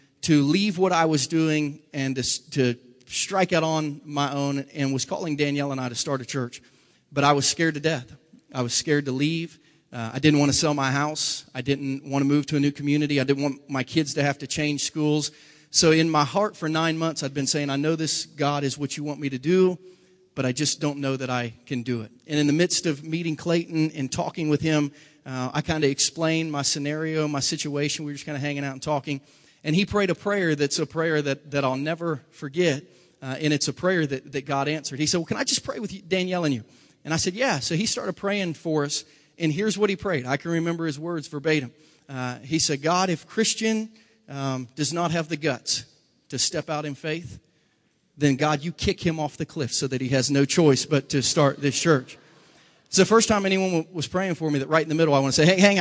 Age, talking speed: 30-49, 250 wpm